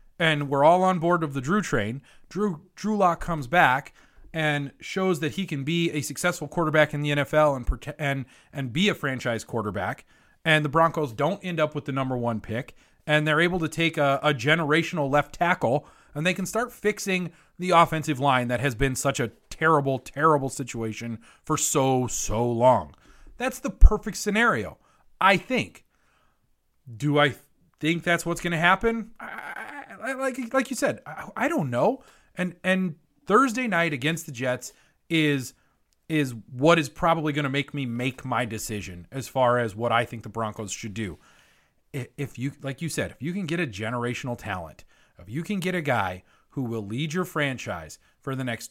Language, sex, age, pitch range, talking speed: English, male, 30-49, 125-170 Hz, 185 wpm